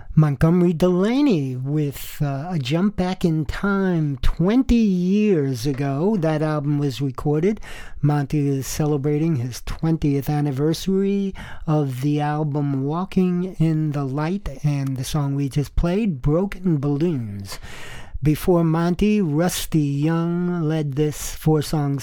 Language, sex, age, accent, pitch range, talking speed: English, male, 50-69, American, 140-170 Hz, 120 wpm